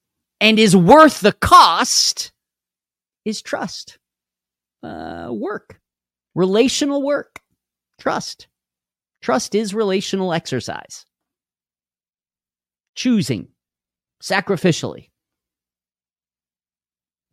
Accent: American